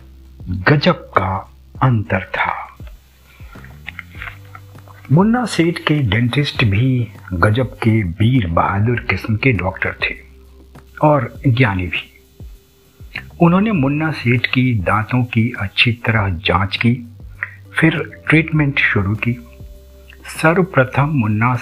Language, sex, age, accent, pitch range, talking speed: Hindi, male, 60-79, native, 100-135 Hz, 100 wpm